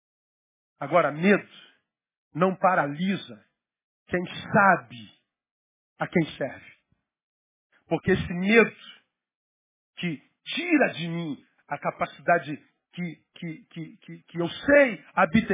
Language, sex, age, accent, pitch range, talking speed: Portuguese, male, 50-69, Brazilian, 140-170 Hz, 95 wpm